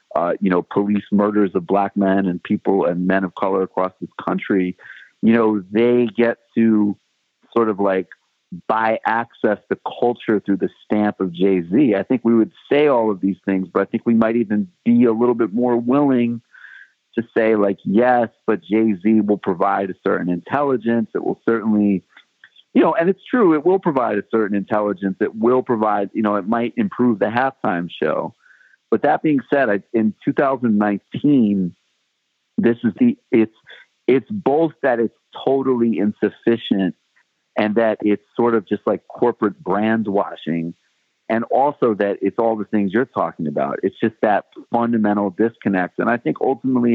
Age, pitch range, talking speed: 50-69, 100-120 Hz, 175 wpm